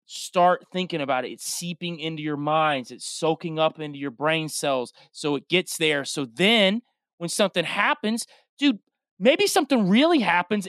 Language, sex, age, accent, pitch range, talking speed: English, male, 30-49, American, 160-220 Hz, 170 wpm